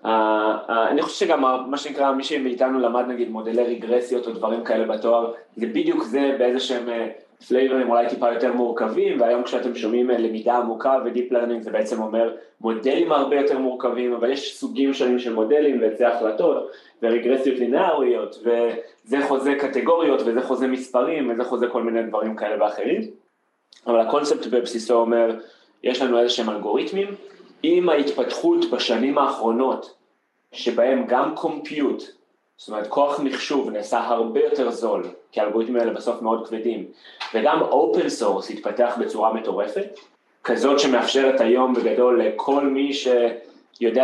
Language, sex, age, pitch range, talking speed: Hebrew, male, 20-39, 115-140 Hz, 145 wpm